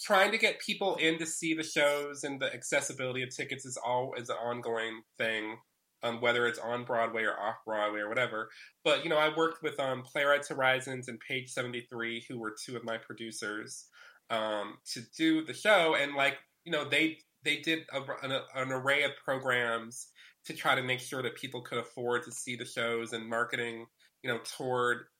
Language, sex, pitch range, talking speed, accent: English, male, 120-145 Hz, 190 wpm, American